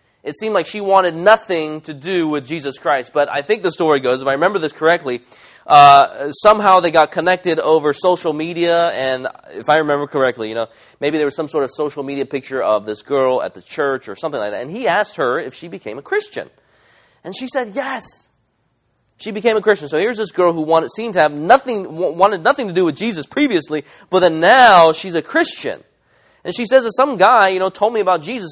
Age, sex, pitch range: 20-39, male, 150-205 Hz